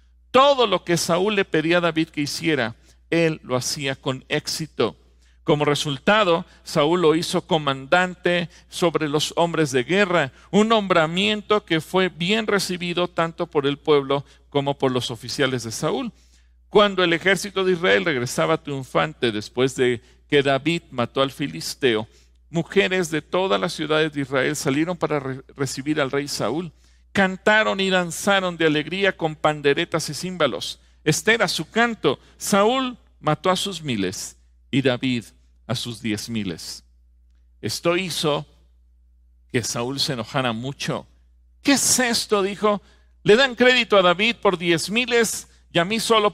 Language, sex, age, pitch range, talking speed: English, male, 50-69, 120-180 Hz, 150 wpm